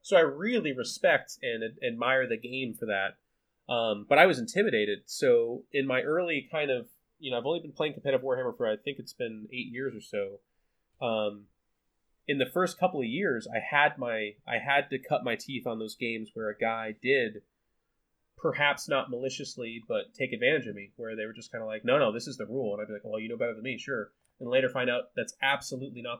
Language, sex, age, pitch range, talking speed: English, male, 30-49, 110-145 Hz, 230 wpm